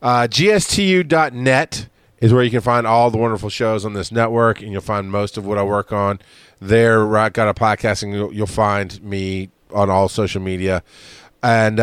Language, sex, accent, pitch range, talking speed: English, male, American, 105-130 Hz, 195 wpm